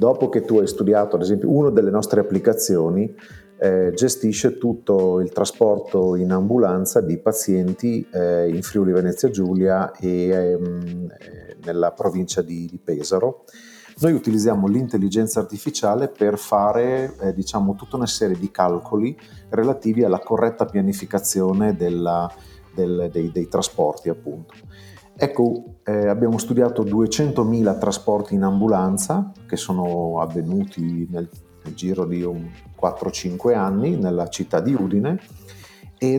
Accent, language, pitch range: native, Italian, 90-115 Hz